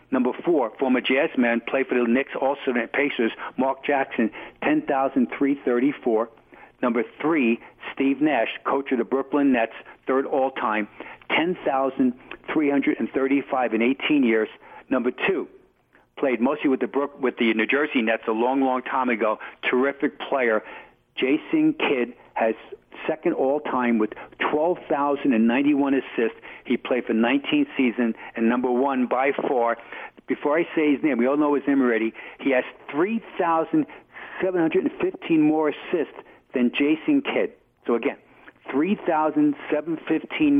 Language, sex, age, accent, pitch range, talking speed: English, male, 50-69, American, 125-180 Hz, 135 wpm